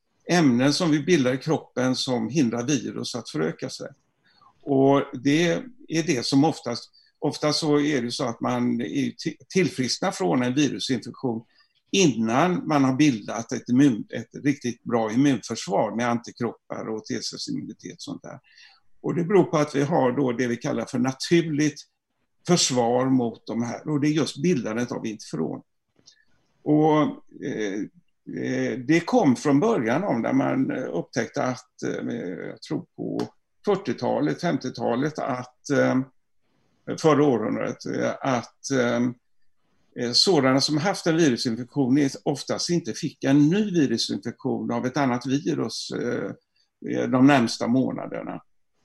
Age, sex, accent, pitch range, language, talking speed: 50-69, male, native, 120-155 Hz, Swedish, 135 wpm